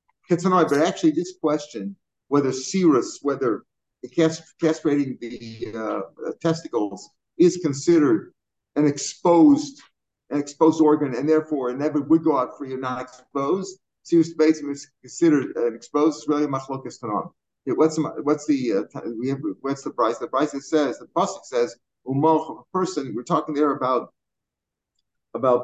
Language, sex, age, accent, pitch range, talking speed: English, male, 50-69, American, 130-160 Hz, 130 wpm